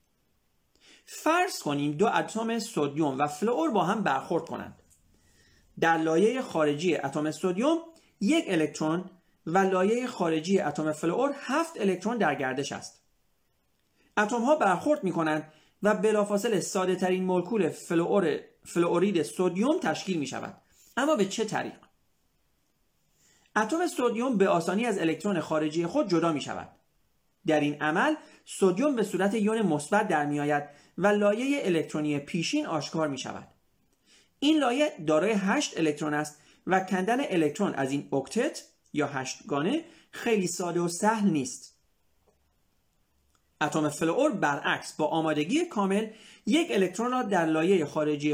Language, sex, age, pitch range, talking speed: Persian, male, 40-59, 155-225 Hz, 135 wpm